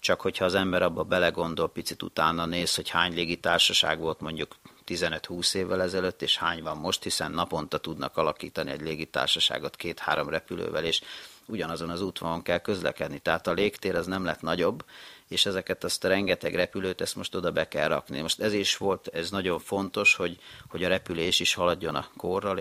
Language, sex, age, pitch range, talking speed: Hungarian, male, 40-59, 85-105 Hz, 185 wpm